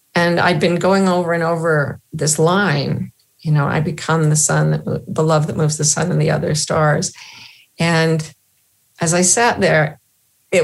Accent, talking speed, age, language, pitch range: American, 175 wpm, 50-69, English, 150-180 Hz